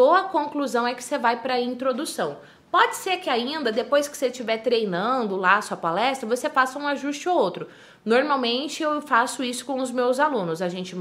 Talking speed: 205 wpm